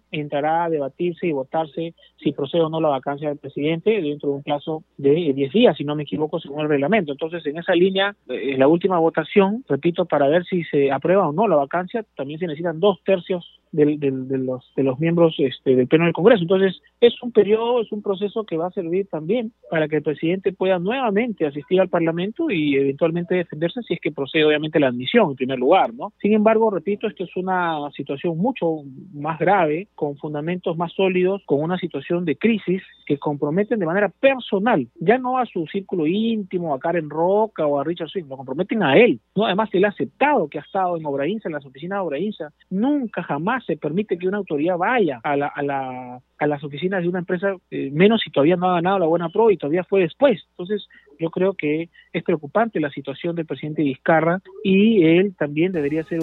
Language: Spanish